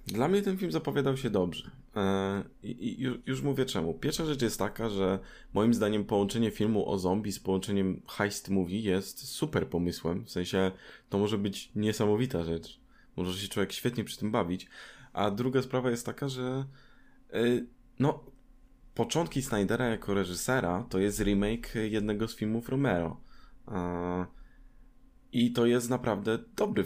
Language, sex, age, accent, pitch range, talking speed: Polish, male, 20-39, native, 95-115 Hz, 145 wpm